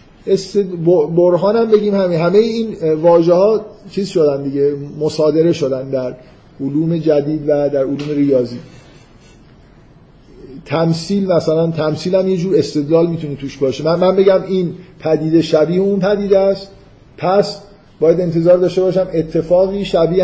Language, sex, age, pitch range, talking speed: Persian, male, 50-69, 140-175 Hz, 135 wpm